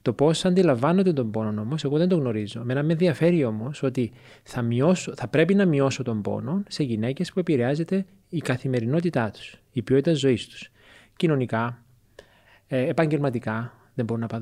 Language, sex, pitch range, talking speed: Greek, male, 115-160 Hz, 160 wpm